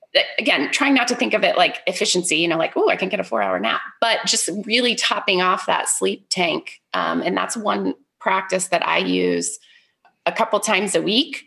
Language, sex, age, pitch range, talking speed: English, female, 20-39, 185-265 Hz, 215 wpm